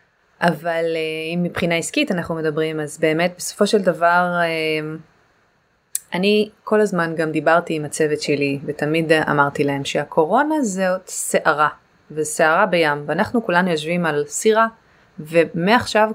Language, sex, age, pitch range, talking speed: English, female, 20-39, 155-185 Hz, 125 wpm